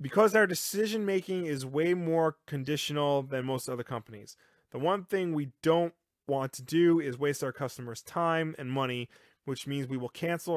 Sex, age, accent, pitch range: male, 30-49, American, 130-155 Hz